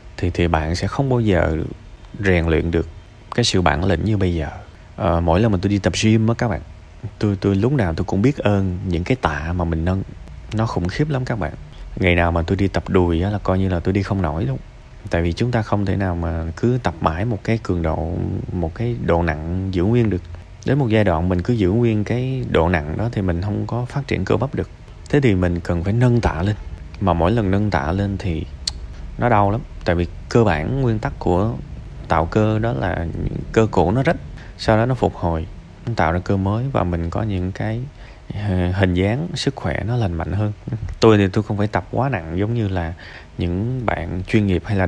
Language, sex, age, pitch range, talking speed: Vietnamese, male, 20-39, 85-110 Hz, 240 wpm